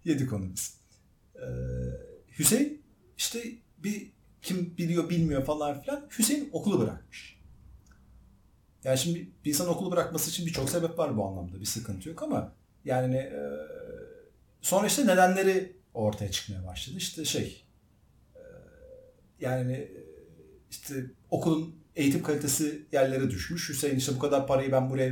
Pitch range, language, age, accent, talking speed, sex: 110-170 Hz, Turkish, 50-69, native, 130 wpm, male